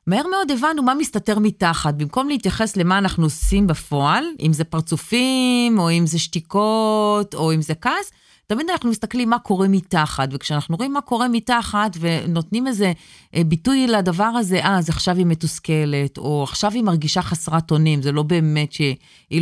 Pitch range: 165-230 Hz